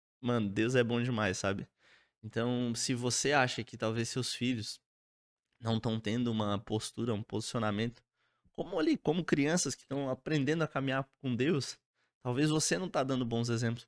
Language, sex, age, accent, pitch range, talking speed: Portuguese, male, 20-39, Brazilian, 115-155 Hz, 170 wpm